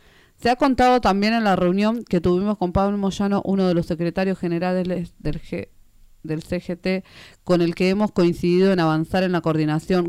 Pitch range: 165-200 Hz